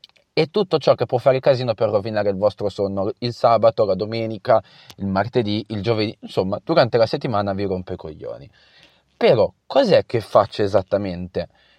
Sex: male